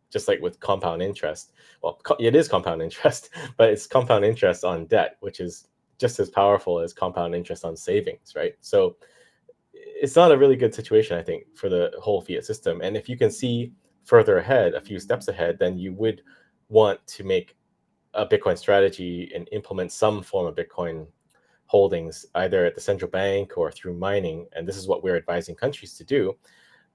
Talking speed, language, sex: 190 wpm, English, male